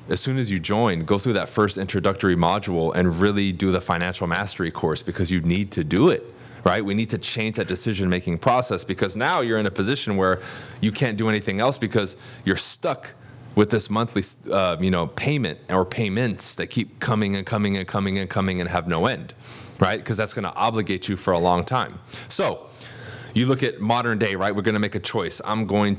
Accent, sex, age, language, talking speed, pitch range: American, male, 20-39, English, 220 wpm, 95-120 Hz